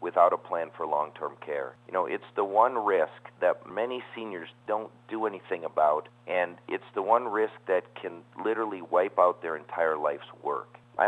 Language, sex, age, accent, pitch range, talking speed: English, male, 50-69, American, 90-115 Hz, 185 wpm